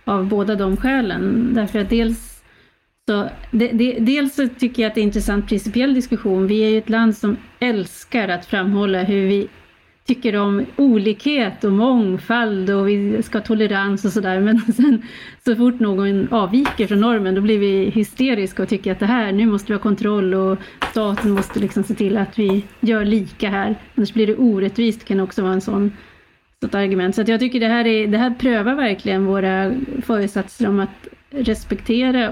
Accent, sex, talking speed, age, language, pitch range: native, female, 190 wpm, 30-49, Swedish, 200-235 Hz